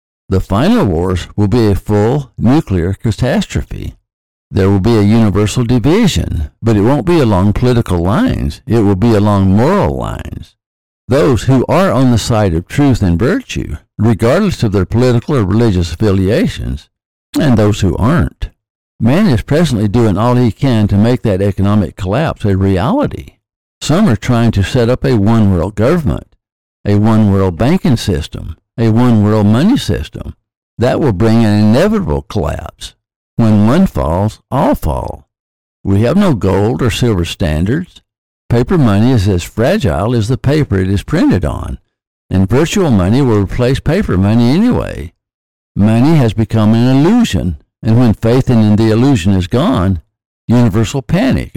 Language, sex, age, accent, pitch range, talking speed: English, male, 60-79, American, 95-120 Hz, 155 wpm